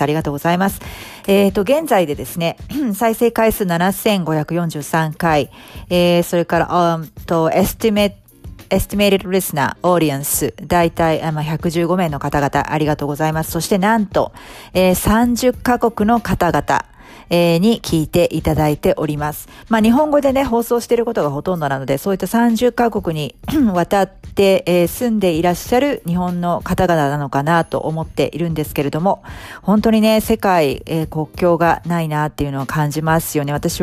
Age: 40-59